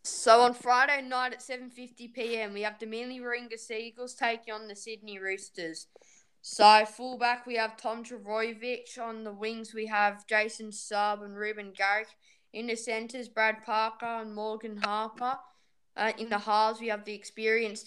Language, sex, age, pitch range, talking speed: Amharic, female, 10-29, 200-225 Hz, 170 wpm